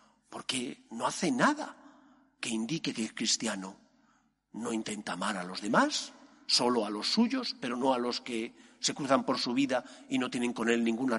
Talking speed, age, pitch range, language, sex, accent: 190 wpm, 50-69, 170-245 Hz, Spanish, male, Spanish